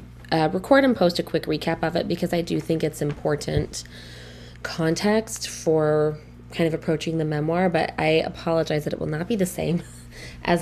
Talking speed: 185 wpm